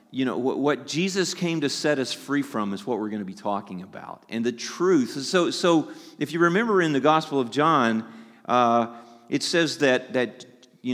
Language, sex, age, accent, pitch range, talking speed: English, male, 40-59, American, 125-160 Hz, 205 wpm